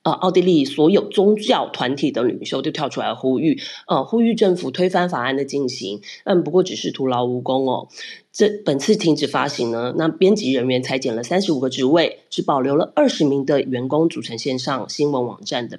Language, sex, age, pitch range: Chinese, female, 30-49, 140-215 Hz